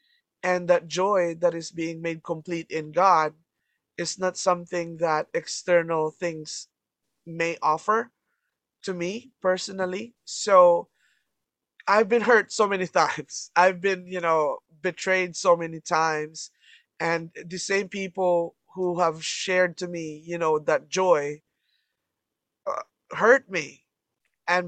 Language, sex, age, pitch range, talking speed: English, male, 20-39, 165-200 Hz, 125 wpm